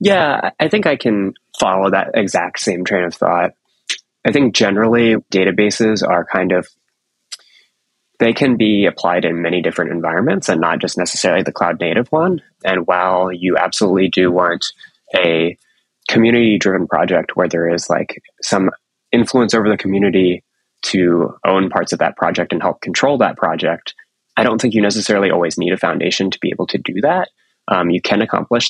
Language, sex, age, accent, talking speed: English, male, 20-39, American, 175 wpm